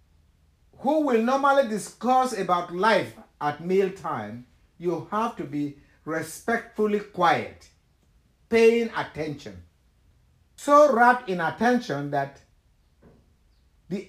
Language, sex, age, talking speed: English, male, 50-69, 95 wpm